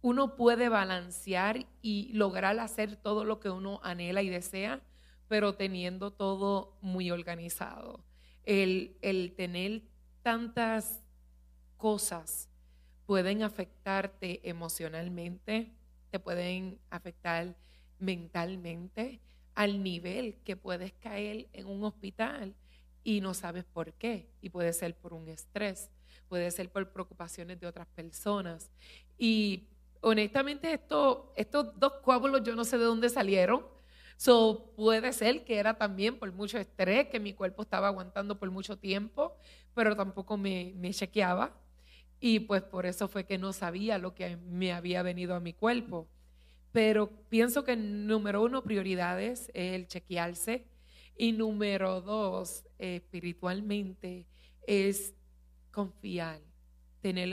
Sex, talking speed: female, 130 wpm